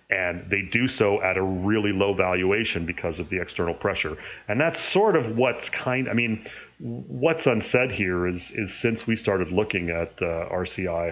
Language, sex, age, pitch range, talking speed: English, male, 30-49, 85-105 Hz, 185 wpm